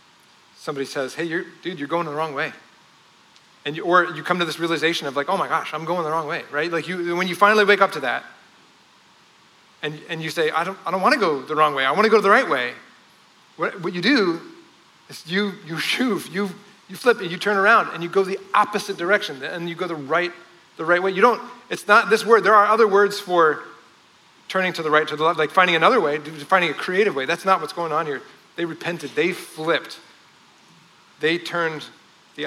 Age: 30-49